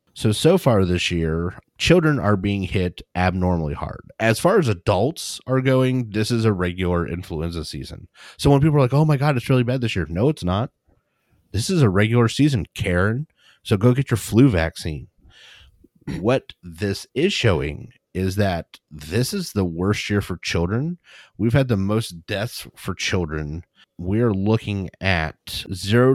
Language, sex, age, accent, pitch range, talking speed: English, male, 30-49, American, 90-125 Hz, 170 wpm